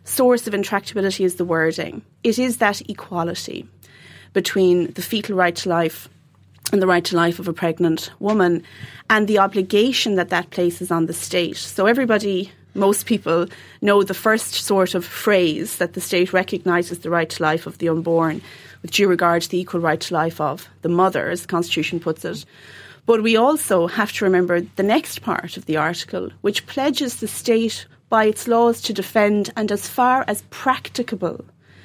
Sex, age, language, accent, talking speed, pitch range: female, 30-49, English, Irish, 185 wpm, 175-220 Hz